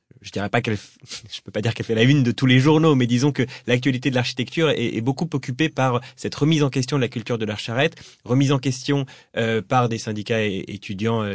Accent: French